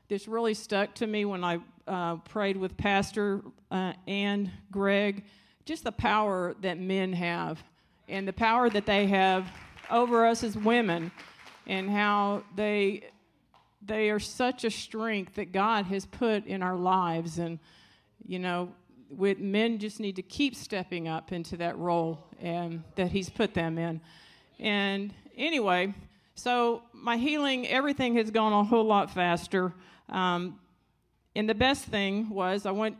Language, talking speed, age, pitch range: English, 155 wpm, 50-69, 185-230 Hz